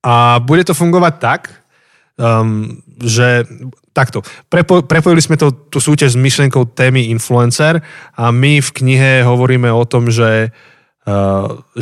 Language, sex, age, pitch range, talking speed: Slovak, male, 20-39, 115-145 Hz, 135 wpm